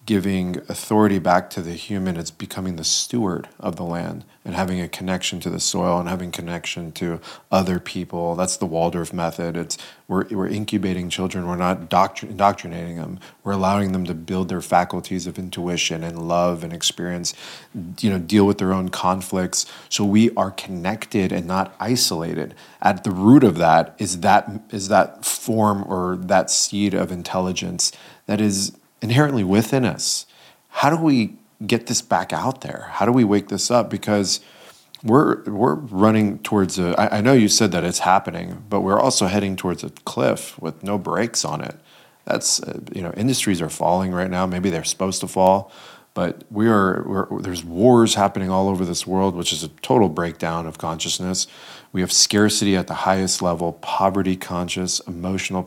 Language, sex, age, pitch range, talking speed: English, male, 30-49, 90-100 Hz, 180 wpm